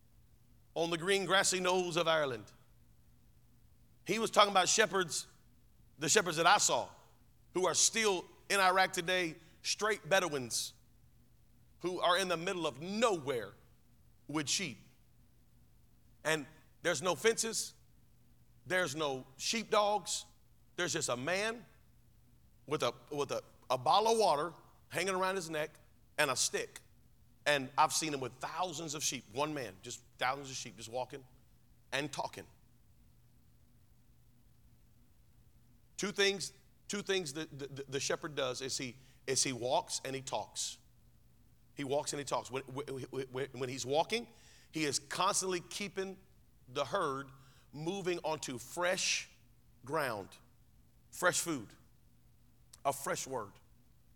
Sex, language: male, English